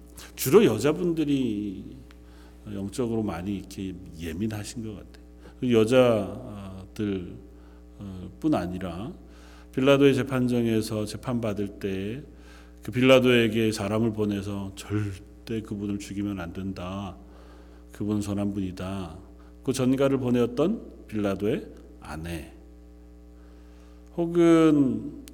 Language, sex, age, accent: Korean, male, 40-59, native